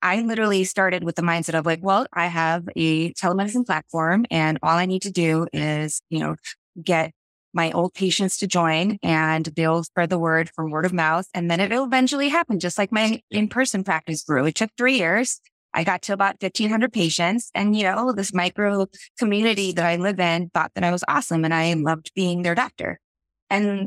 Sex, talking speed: female, 205 wpm